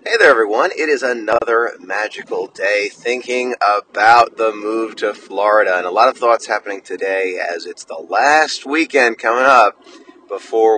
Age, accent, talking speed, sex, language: 30-49, American, 160 wpm, male, English